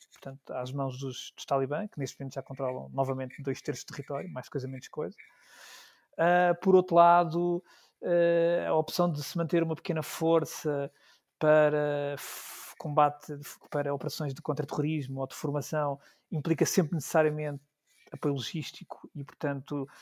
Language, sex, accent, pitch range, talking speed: Portuguese, male, Portuguese, 140-160 Hz, 155 wpm